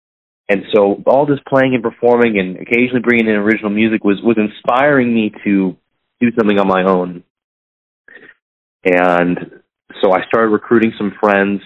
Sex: male